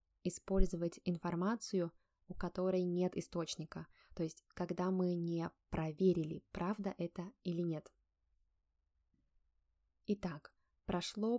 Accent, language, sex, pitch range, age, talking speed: native, Russian, female, 160-195 Hz, 20-39, 95 wpm